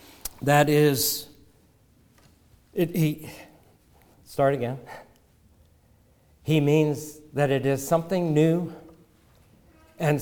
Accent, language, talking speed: American, English, 80 wpm